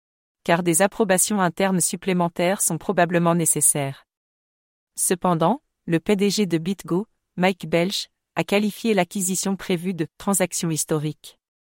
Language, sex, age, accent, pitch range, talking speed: English, female, 40-59, French, 165-195 Hz, 110 wpm